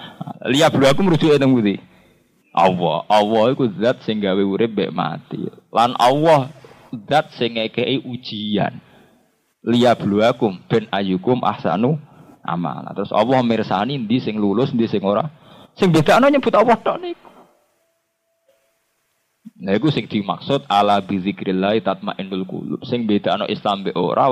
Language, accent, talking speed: Indonesian, native, 110 wpm